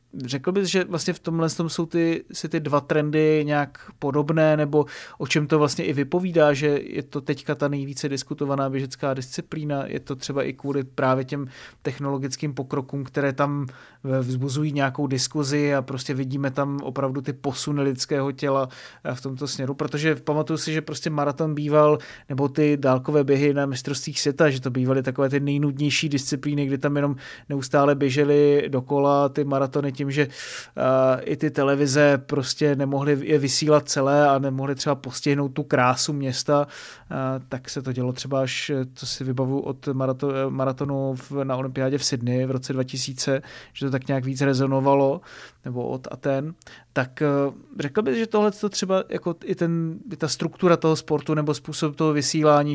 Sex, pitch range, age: male, 135-150 Hz, 30-49